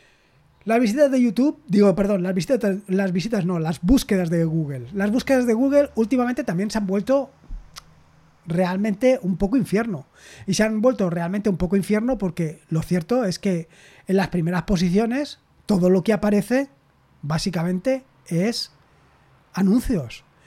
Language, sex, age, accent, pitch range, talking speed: Spanish, male, 20-39, Spanish, 180-235 Hz, 150 wpm